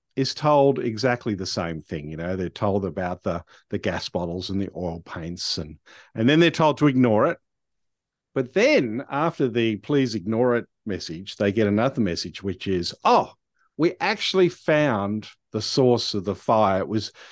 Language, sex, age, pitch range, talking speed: English, male, 50-69, 95-130 Hz, 180 wpm